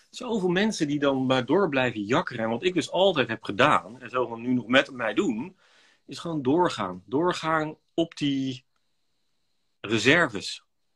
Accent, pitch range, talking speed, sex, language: Dutch, 120-160 Hz, 160 wpm, male, Dutch